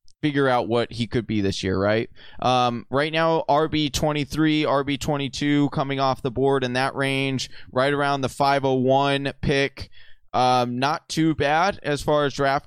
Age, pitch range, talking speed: 20-39, 130-160 Hz, 190 wpm